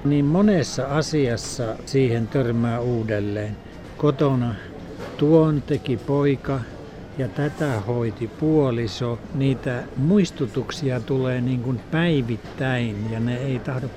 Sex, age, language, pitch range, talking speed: male, 60-79, Finnish, 115-140 Hz, 105 wpm